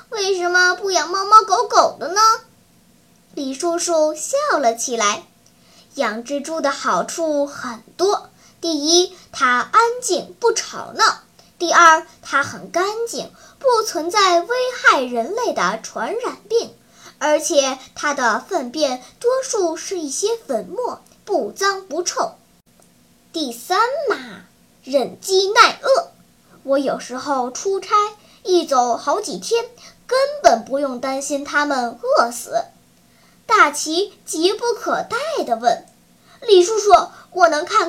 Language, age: Chinese, 10-29